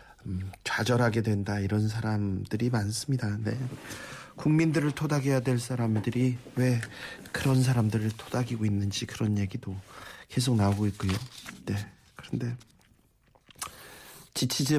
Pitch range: 105-135 Hz